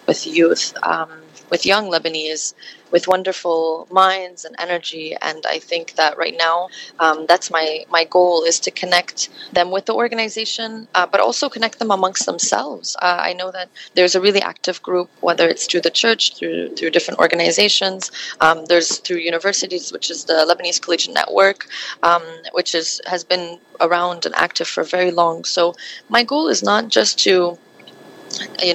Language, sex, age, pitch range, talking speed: Arabic, female, 20-39, 170-210 Hz, 175 wpm